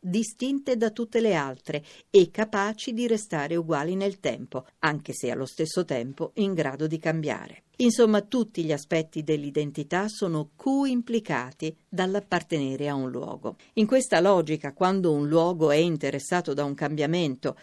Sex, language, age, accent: female, Italian, 50-69, native